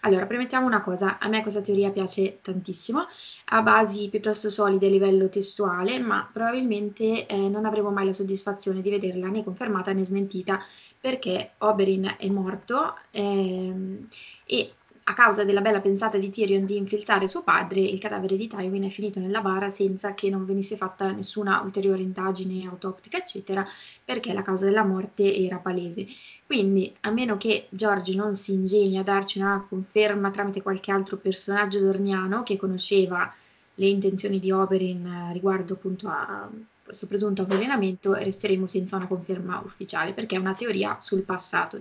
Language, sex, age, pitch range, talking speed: Italian, female, 20-39, 190-205 Hz, 160 wpm